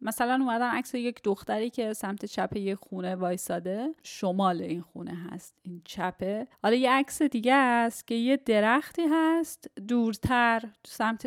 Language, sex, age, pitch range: Persian, female, 10-29, 195-260 Hz